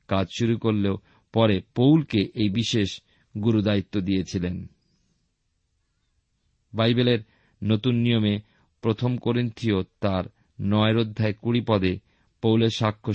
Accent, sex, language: native, male, Bengali